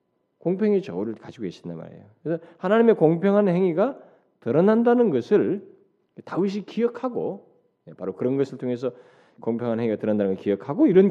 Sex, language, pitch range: male, Korean, 120-180 Hz